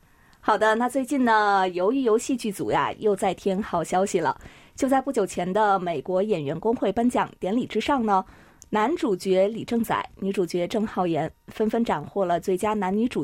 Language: Chinese